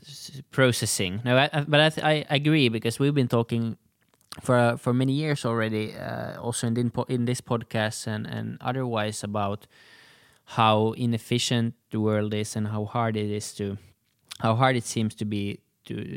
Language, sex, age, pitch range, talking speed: Finnish, male, 20-39, 105-120 Hz, 180 wpm